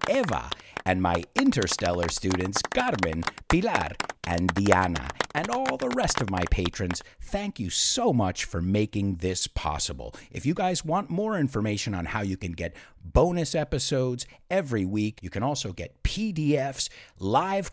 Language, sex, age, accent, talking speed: English, male, 50-69, American, 150 wpm